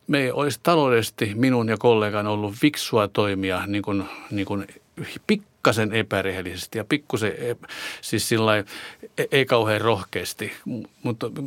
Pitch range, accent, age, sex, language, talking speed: 100-120 Hz, native, 50-69, male, Finnish, 125 wpm